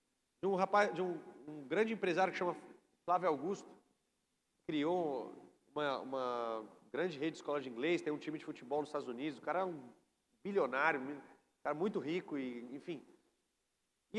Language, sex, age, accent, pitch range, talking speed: Portuguese, male, 40-59, Brazilian, 170-220 Hz, 175 wpm